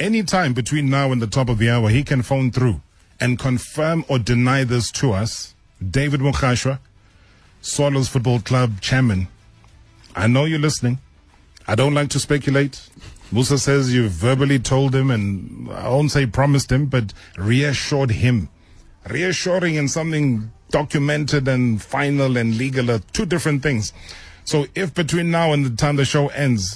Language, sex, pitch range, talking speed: English, male, 100-135 Hz, 165 wpm